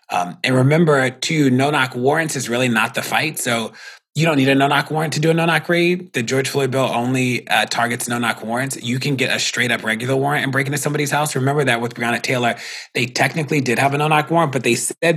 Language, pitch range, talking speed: English, 120-160 Hz, 235 wpm